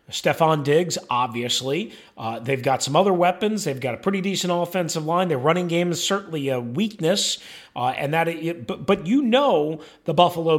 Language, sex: English, male